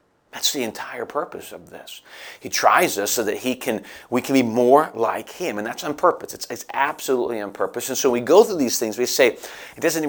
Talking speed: 230 wpm